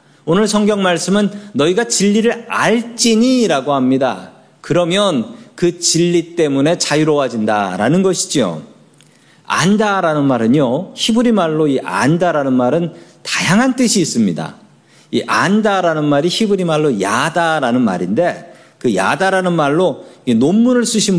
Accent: native